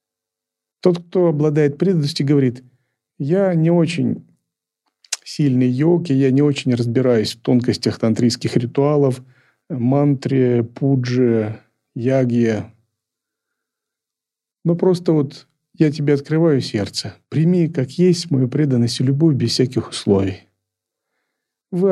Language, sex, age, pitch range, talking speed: Russian, male, 40-59, 115-160 Hz, 105 wpm